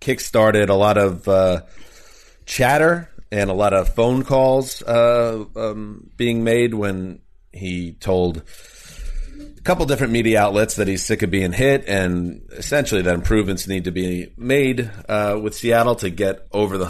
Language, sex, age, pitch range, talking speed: English, male, 30-49, 95-135 Hz, 160 wpm